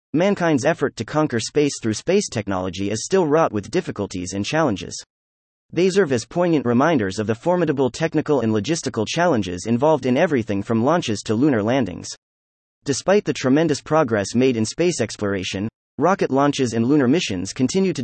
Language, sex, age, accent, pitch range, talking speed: English, male, 30-49, American, 110-155 Hz, 165 wpm